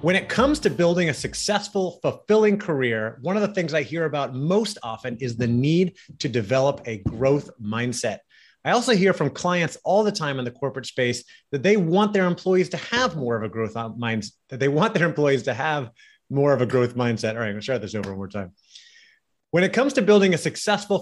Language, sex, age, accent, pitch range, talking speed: English, male, 30-49, American, 130-180 Hz, 230 wpm